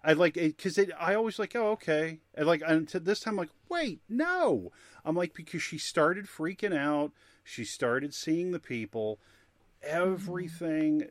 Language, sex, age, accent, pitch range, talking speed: English, male, 40-59, American, 110-155 Hz, 175 wpm